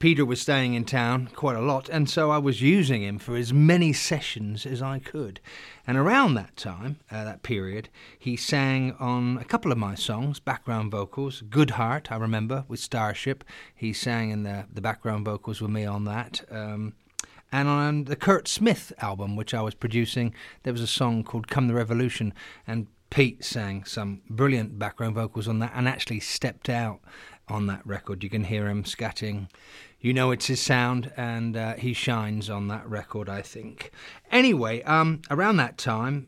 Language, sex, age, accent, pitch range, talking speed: English, male, 30-49, British, 110-140 Hz, 190 wpm